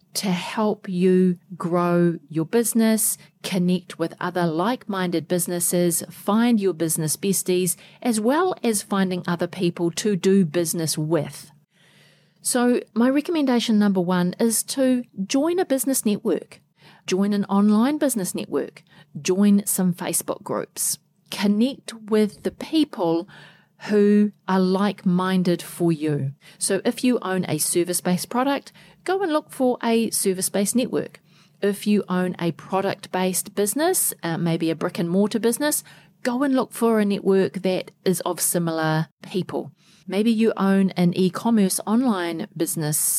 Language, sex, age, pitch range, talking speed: English, female, 40-59, 175-215 Hz, 135 wpm